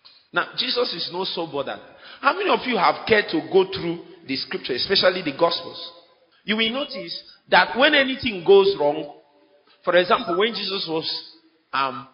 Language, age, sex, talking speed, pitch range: English, 40-59, male, 170 wpm, 150-195 Hz